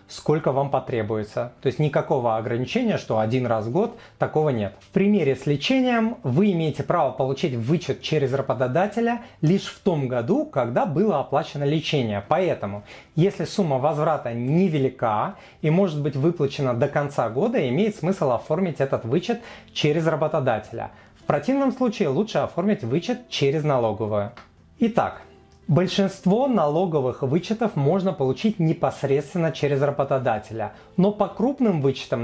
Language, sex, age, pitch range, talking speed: Russian, male, 30-49, 130-195 Hz, 135 wpm